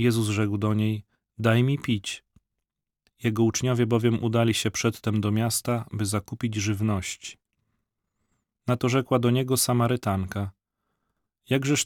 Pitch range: 105-120 Hz